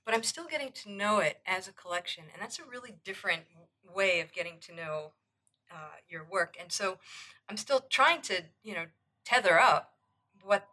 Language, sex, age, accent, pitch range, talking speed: English, female, 40-59, American, 155-195 Hz, 190 wpm